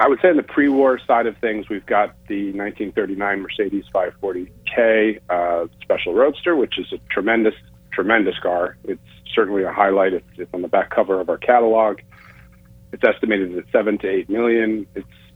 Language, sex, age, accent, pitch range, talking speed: English, male, 40-59, American, 90-115 Hz, 175 wpm